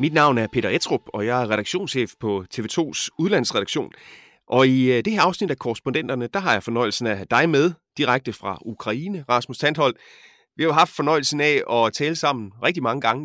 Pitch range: 115-150 Hz